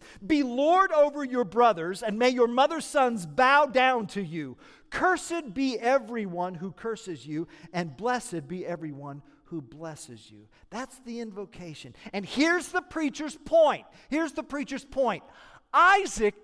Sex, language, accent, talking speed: male, English, American, 145 wpm